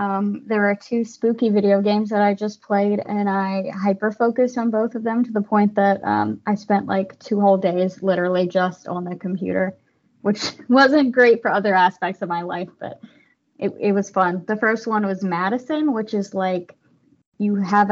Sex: female